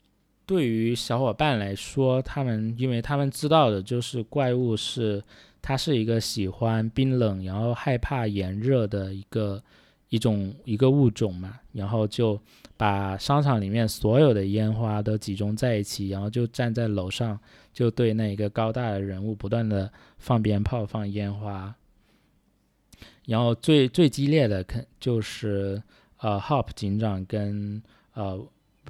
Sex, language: male, Chinese